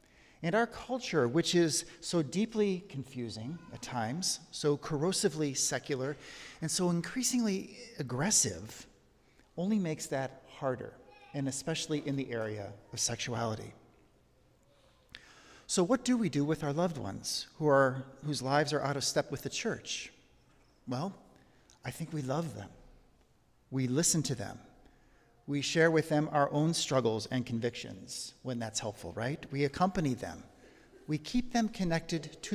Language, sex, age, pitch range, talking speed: English, male, 40-59, 120-165 Hz, 145 wpm